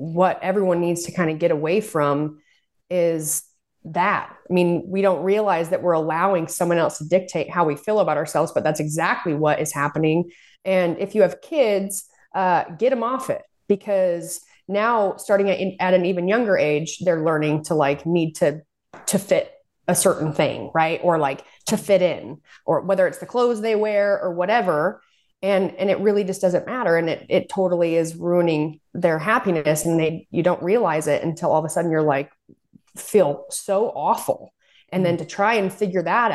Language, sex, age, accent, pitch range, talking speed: English, female, 30-49, American, 160-195 Hz, 195 wpm